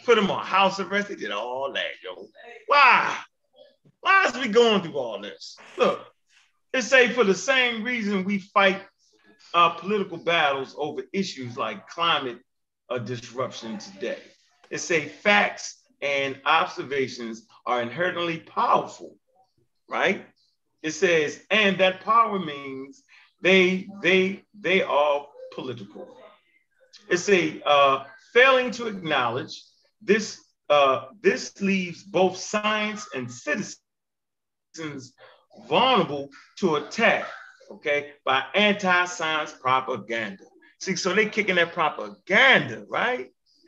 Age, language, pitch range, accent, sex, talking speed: 30-49, English, 160-225 Hz, American, male, 120 wpm